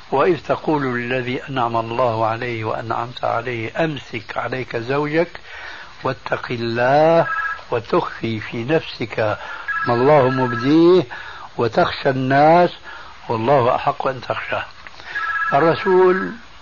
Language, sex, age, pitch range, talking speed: Arabic, male, 60-79, 125-160 Hz, 95 wpm